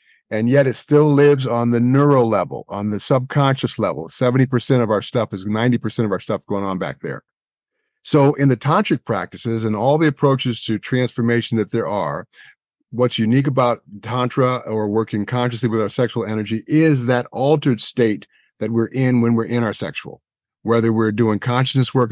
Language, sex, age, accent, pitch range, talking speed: English, male, 50-69, American, 110-130 Hz, 185 wpm